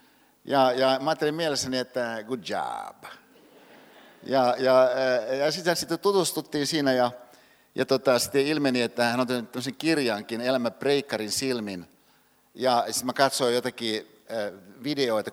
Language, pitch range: Finnish, 115-140 Hz